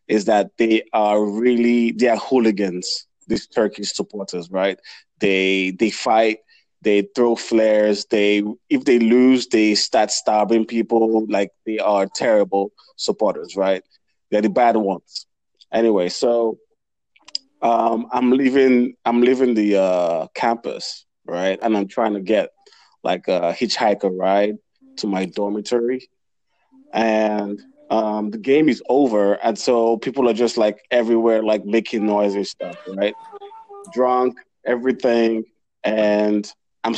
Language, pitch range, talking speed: English, 105-125 Hz, 135 wpm